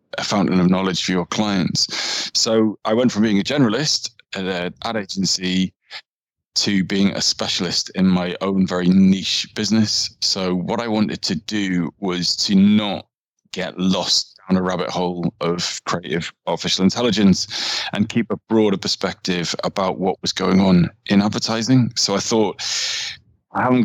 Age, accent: 20-39, British